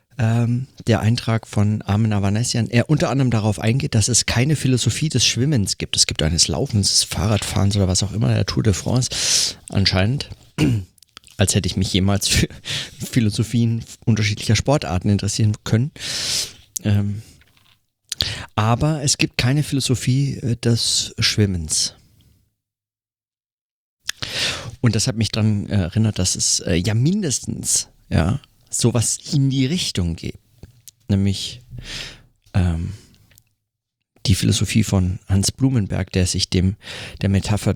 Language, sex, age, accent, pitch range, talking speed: German, male, 40-59, German, 100-120 Hz, 125 wpm